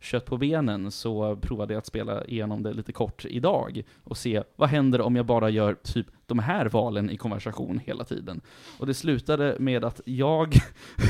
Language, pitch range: Swedish, 115-145 Hz